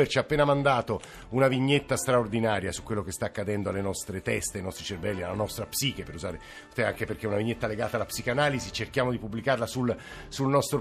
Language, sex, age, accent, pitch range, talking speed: Italian, male, 50-69, native, 110-135 Hz, 205 wpm